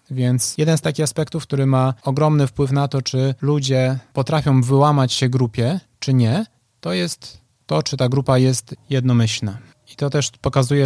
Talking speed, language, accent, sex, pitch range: 170 wpm, Polish, native, male, 125-140 Hz